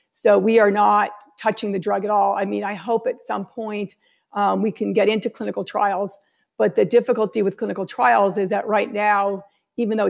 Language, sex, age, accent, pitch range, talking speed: English, female, 50-69, American, 200-220 Hz, 210 wpm